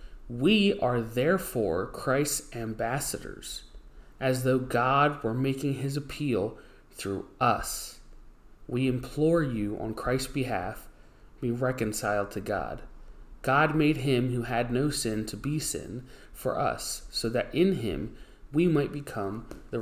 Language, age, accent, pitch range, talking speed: English, 30-49, American, 120-150 Hz, 135 wpm